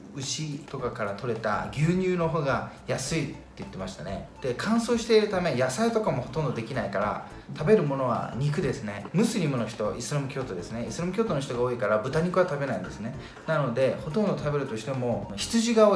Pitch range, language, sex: 115-185 Hz, Japanese, male